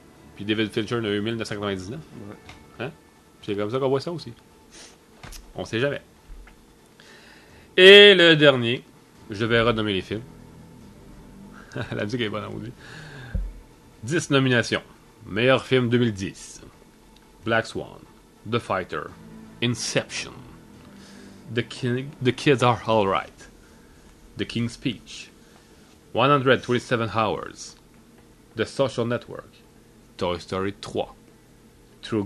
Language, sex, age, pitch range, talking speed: English, male, 30-49, 100-125 Hz, 110 wpm